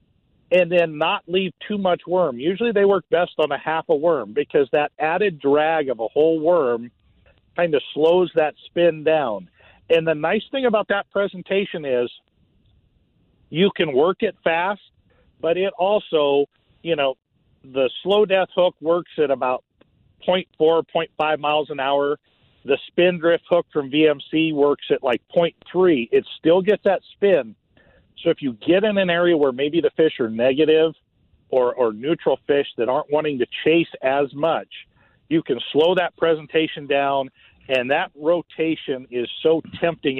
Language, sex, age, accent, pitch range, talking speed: English, male, 50-69, American, 140-180 Hz, 165 wpm